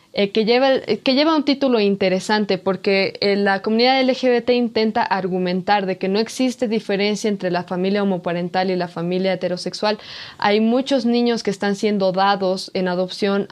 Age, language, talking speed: 20-39, Spanish, 170 wpm